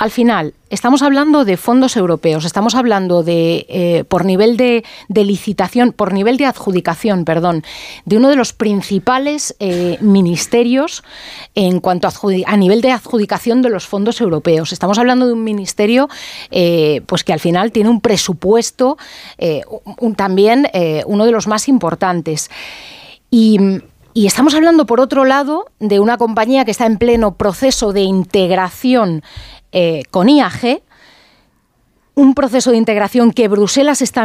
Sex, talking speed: female, 155 wpm